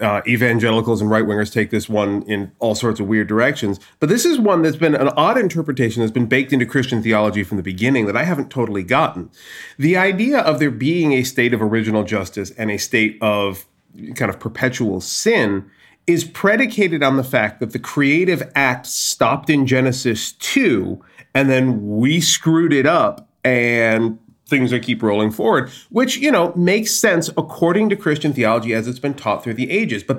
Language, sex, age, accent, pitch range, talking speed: English, male, 30-49, American, 115-155 Hz, 195 wpm